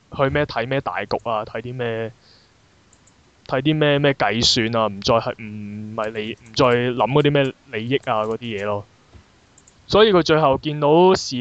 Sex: male